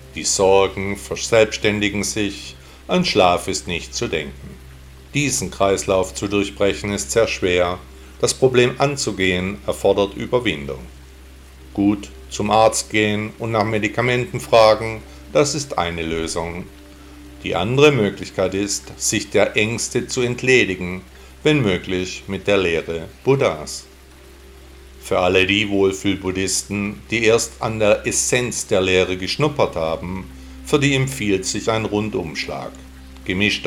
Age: 50-69